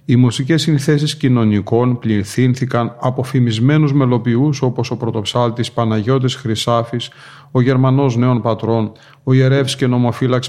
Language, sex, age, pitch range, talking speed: Greek, male, 40-59, 115-135 Hz, 120 wpm